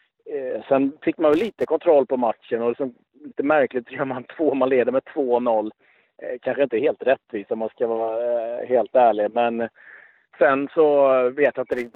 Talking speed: 180 wpm